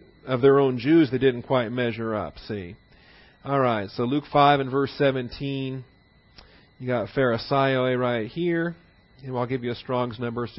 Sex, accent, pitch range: male, American, 120-145 Hz